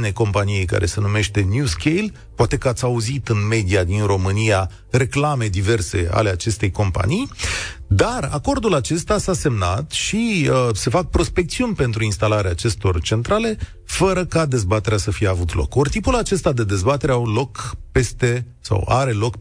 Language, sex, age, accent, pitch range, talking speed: Romanian, male, 40-59, native, 105-160 Hz, 160 wpm